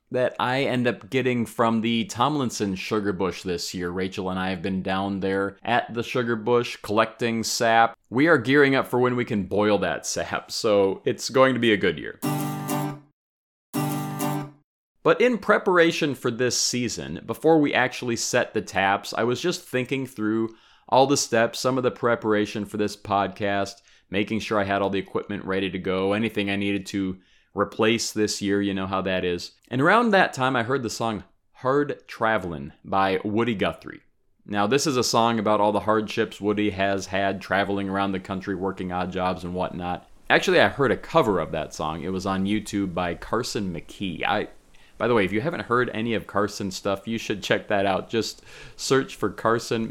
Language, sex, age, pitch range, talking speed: English, male, 30-49, 100-120 Hz, 195 wpm